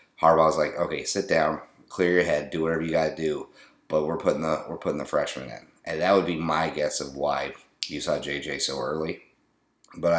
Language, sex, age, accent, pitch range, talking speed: English, male, 30-49, American, 75-90 Hz, 210 wpm